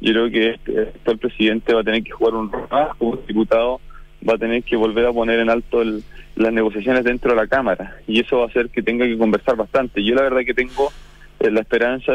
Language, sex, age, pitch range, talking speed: Spanish, male, 20-39, 110-130 Hz, 250 wpm